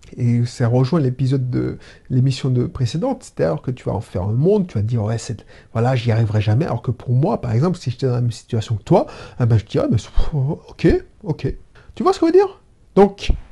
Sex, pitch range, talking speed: male, 125-180 Hz, 250 wpm